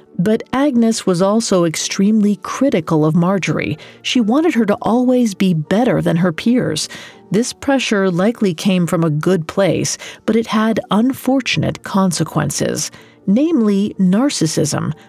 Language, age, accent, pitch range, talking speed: English, 40-59, American, 165-230 Hz, 130 wpm